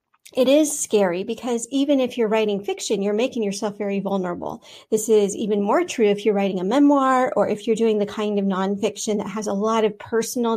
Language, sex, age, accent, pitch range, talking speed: English, female, 40-59, American, 200-235 Hz, 215 wpm